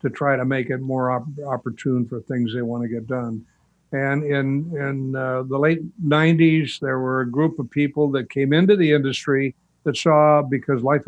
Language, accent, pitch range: English, American, 130-155 Hz